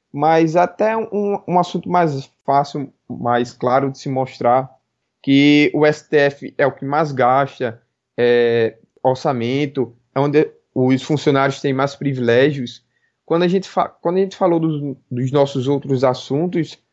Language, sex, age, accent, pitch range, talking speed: Portuguese, male, 20-39, Brazilian, 130-170 Hz, 150 wpm